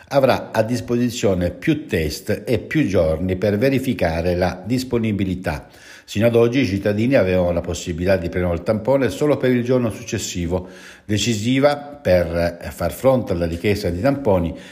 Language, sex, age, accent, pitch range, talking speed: Italian, male, 60-79, native, 90-120 Hz, 150 wpm